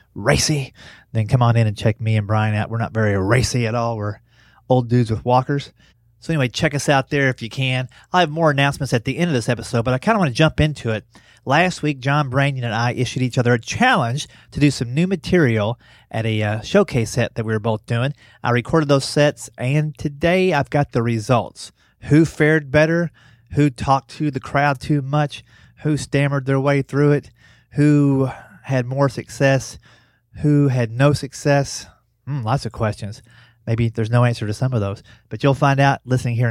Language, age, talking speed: English, 30-49, 210 wpm